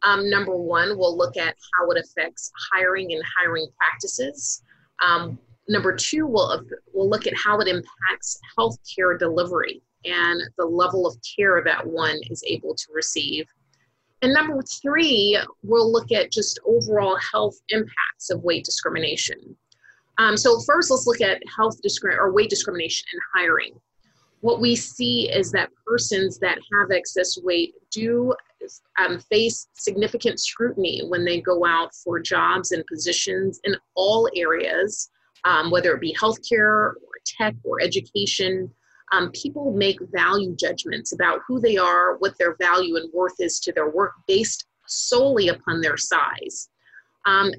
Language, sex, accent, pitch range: English, female, American, 180-250 Hz